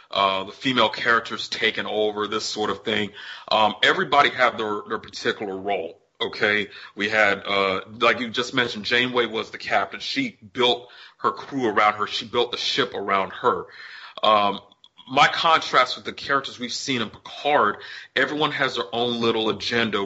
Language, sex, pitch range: English, male, 105-125 Hz